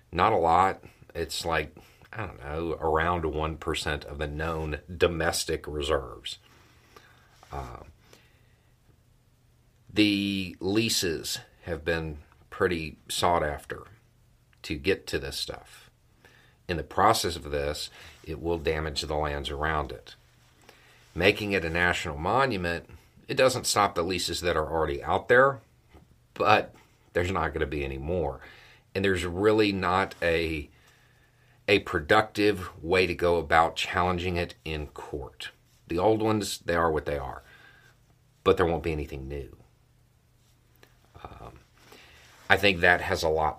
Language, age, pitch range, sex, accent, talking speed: English, 40-59, 75-105 Hz, male, American, 135 wpm